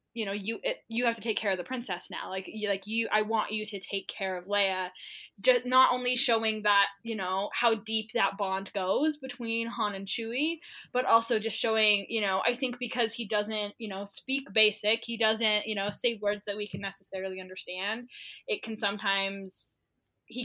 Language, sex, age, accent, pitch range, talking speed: English, female, 10-29, American, 190-220 Hz, 210 wpm